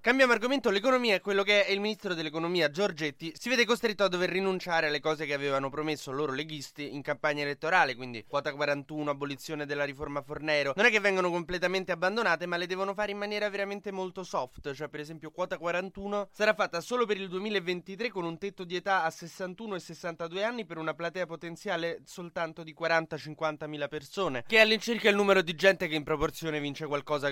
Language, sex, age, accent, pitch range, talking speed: Italian, male, 20-39, native, 150-200 Hz, 200 wpm